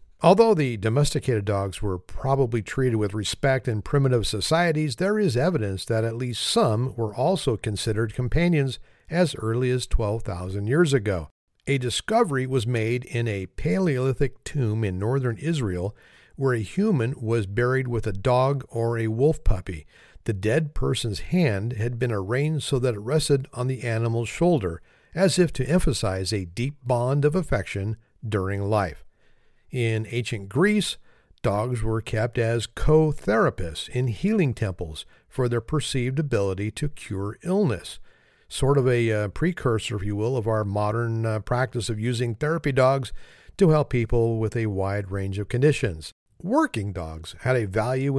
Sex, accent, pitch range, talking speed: male, American, 110-145 Hz, 160 wpm